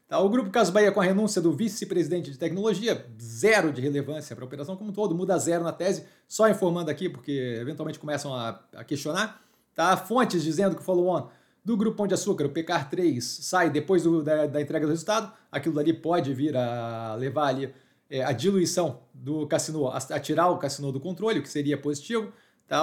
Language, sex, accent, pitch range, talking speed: Portuguese, male, Brazilian, 140-185 Hz, 200 wpm